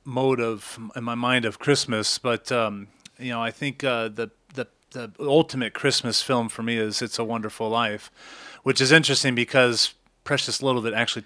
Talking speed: 185 wpm